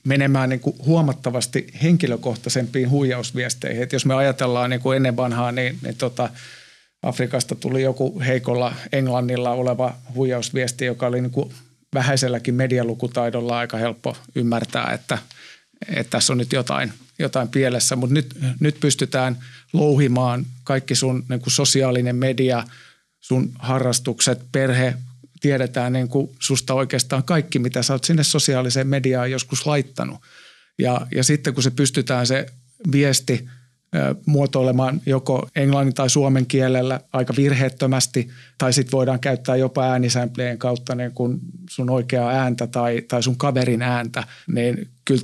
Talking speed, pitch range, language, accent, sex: 120 wpm, 125-135 Hz, Finnish, native, male